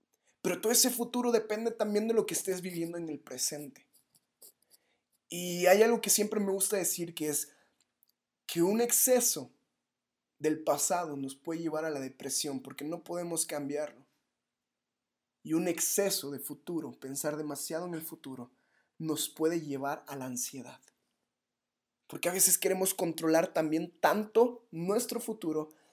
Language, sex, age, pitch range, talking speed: Spanish, male, 20-39, 160-215 Hz, 150 wpm